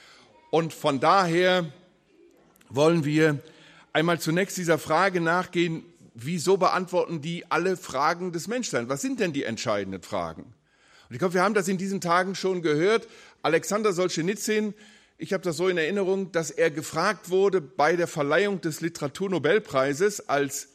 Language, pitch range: German, 160-205 Hz